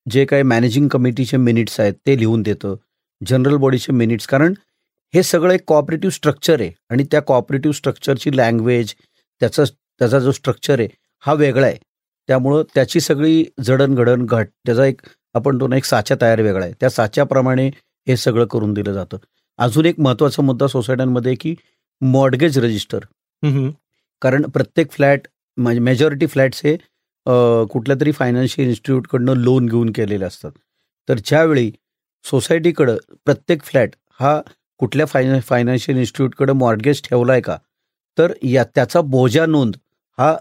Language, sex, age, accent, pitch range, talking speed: Marathi, male, 40-59, native, 125-145 Hz, 140 wpm